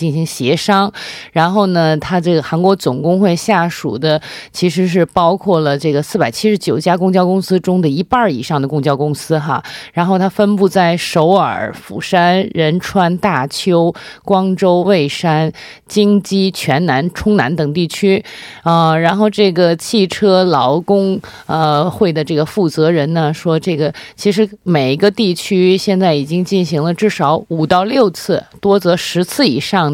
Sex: female